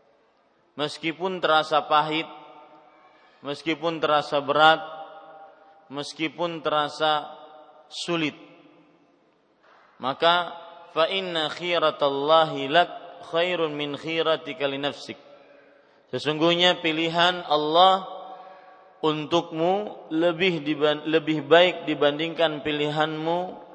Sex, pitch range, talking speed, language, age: male, 150-170 Hz, 65 wpm, Malay, 40-59